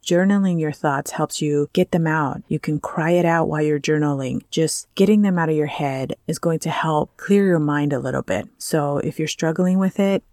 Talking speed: 225 wpm